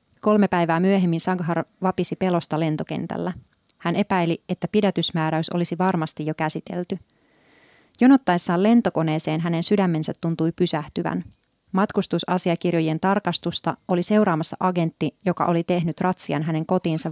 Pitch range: 160-190 Hz